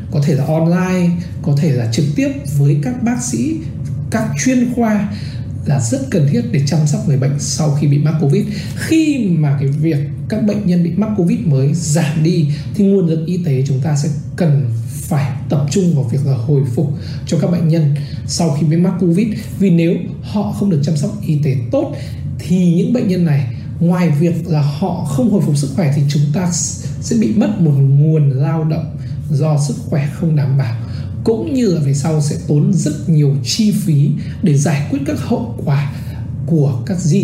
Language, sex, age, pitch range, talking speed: Vietnamese, male, 20-39, 140-170 Hz, 210 wpm